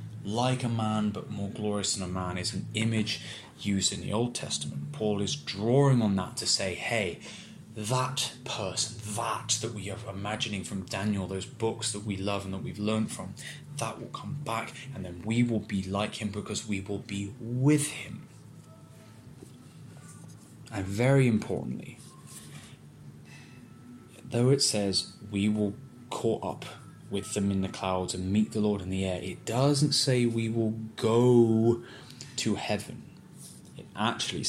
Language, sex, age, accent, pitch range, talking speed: English, male, 20-39, British, 95-120 Hz, 160 wpm